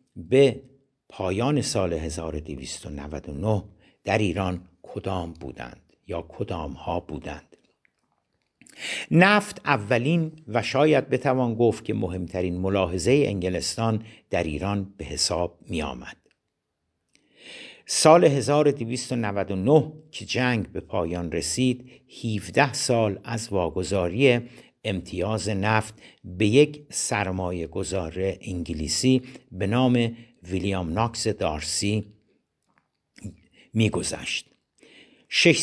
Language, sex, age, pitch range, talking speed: Persian, male, 60-79, 90-130 Hz, 90 wpm